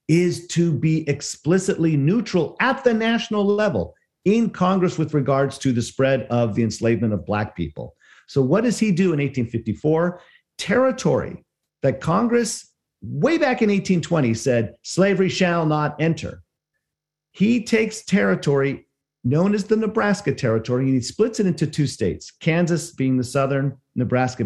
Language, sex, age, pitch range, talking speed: English, male, 50-69, 130-200 Hz, 150 wpm